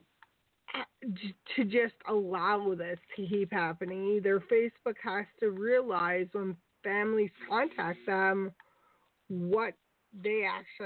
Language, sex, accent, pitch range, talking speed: English, female, American, 185-235 Hz, 105 wpm